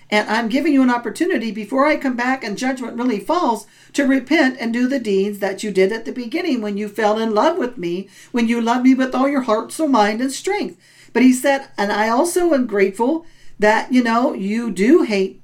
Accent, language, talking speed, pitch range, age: American, English, 230 wpm, 215-295 Hz, 50-69